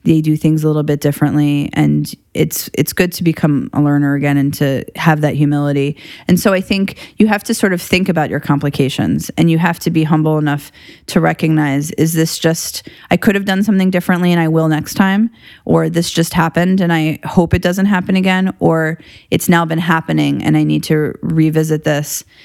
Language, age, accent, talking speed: English, 30-49, American, 210 wpm